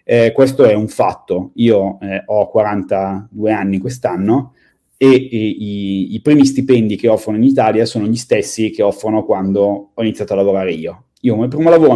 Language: Italian